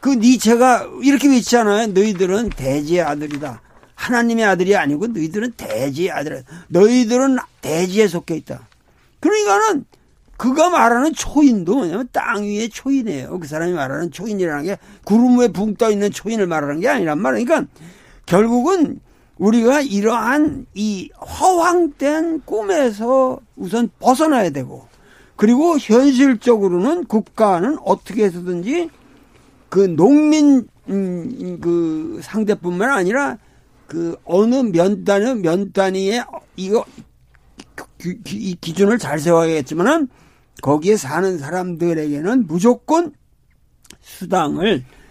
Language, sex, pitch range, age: Korean, male, 175-250 Hz, 50-69